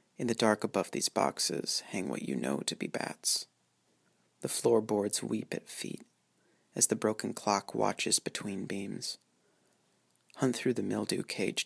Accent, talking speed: American, 155 wpm